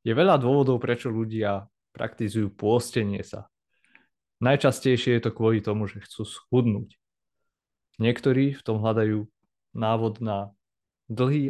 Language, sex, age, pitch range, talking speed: Slovak, male, 20-39, 105-125 Hz, 120 wpm